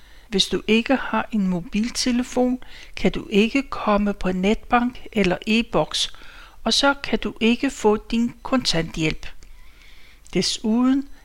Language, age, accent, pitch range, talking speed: Danish, 60-79, native, 190-240 Hz, 125 wpm